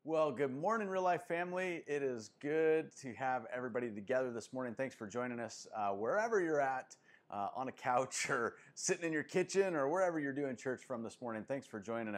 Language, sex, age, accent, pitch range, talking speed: English, male, 30-49, American, 115-145 Hz, 210 wpm